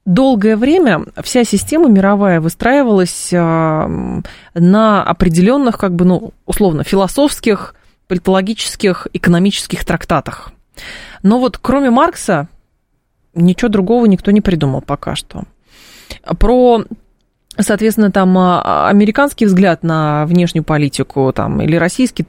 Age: 20-39